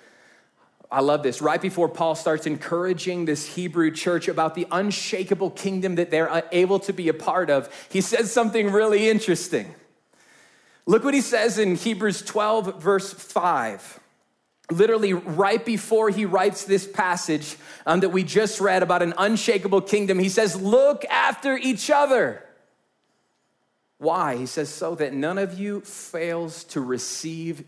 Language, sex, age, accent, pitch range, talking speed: English, male, 30-49, American, 160-205 Hz, 150 wpm